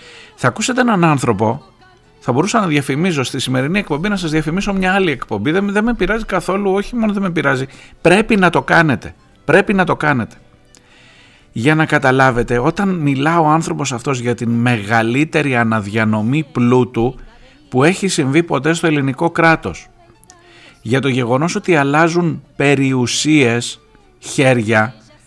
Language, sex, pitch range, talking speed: Greek, male, 125-170 Hz, 145 wpm